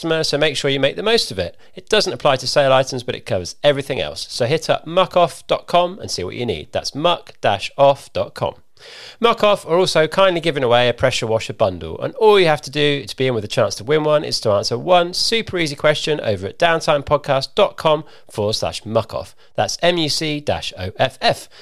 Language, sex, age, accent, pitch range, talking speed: English, male, 40-59, British, 125-175 Hz, 200 wpm